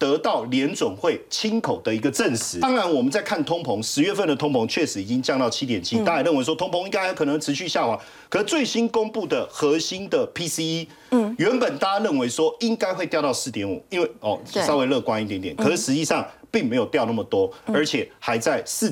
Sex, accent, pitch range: male, native, 150-245 Hz